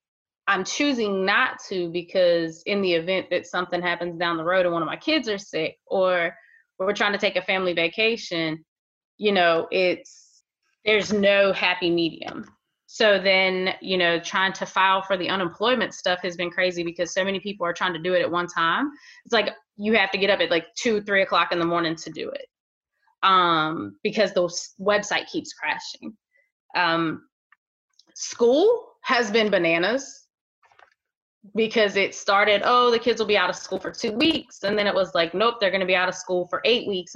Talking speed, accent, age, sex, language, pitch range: 195 wpm, American, 20-39, female, English, 175-215 Hz